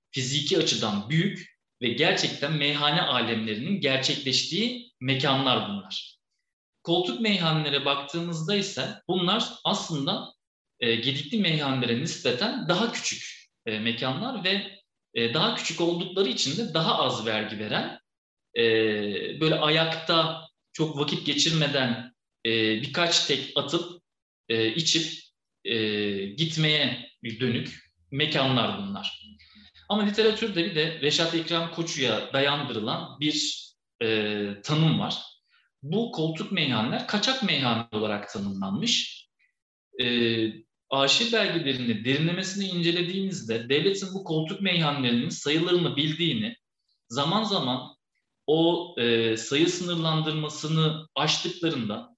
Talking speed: 95 wpm